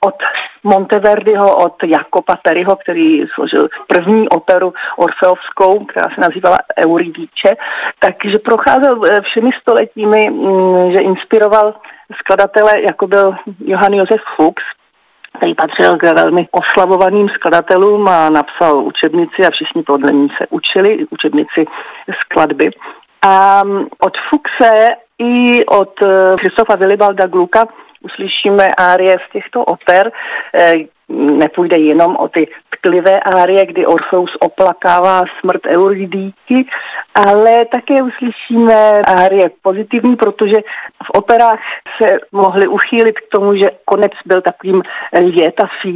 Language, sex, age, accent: Czech, female, 40-59, native